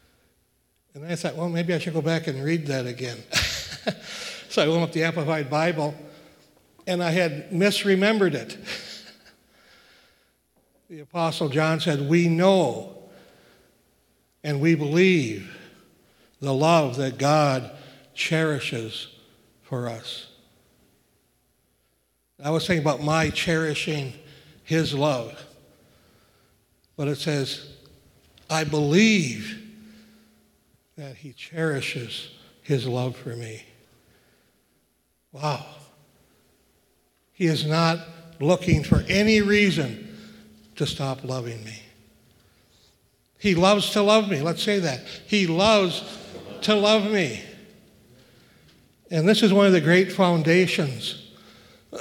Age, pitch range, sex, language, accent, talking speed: 60-79, 130-175 Hz, male, English, American, 110 wpm